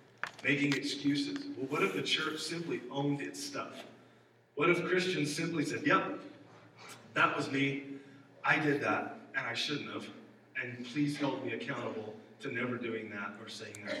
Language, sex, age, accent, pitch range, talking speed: English, male, 40-59, American, 115-140 Hz, 165 wpm